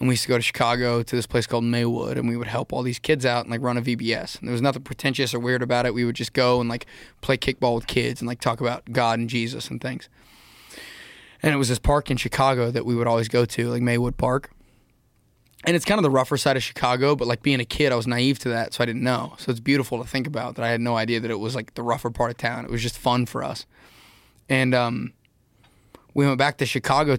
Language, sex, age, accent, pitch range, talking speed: English, male, 20-39, American, 120-130 Hz, 275 wpm